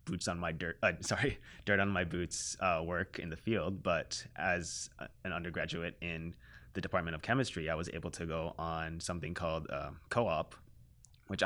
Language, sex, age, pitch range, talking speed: English, male, 20-39, 80-95 Hz, 185 wpm